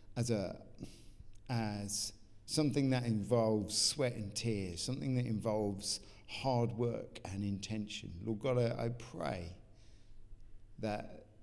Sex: male